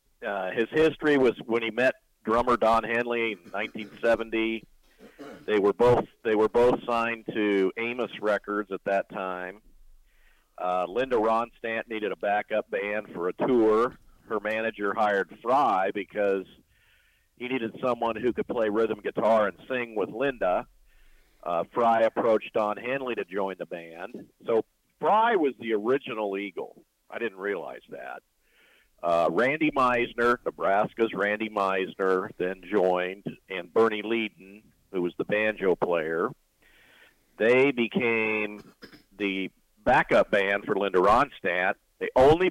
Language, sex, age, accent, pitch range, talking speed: English, male, 50-69, American, 100-120 Hz, 135 wpm